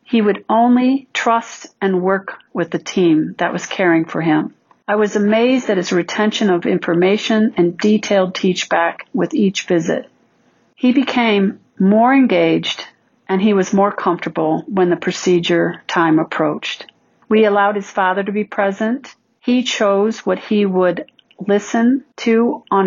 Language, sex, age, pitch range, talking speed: English, female, 50-69, 180-225 Hz, 150 wpm